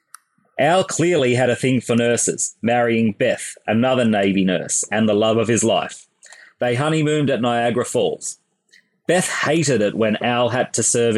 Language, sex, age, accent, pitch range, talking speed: English, male, 30-49, Australian, 110-125 Hz, 165 wpm